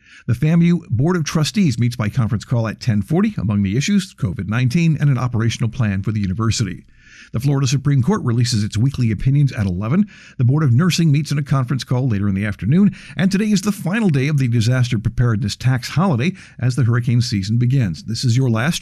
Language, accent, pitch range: English, American, 115-150 Hz